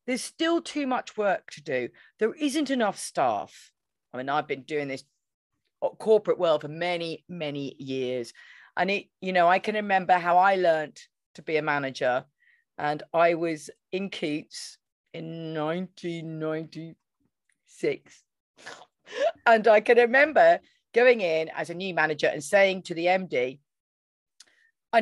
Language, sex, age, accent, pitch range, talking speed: English, female, 40-59, British, 165-245 Hz, 145 wpm